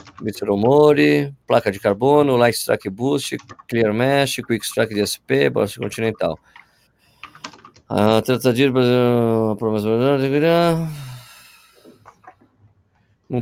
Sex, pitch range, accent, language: male, 105-140 Hz, Brazilian, Portuguese